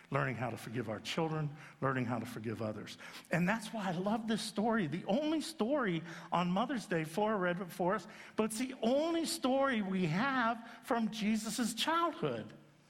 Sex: male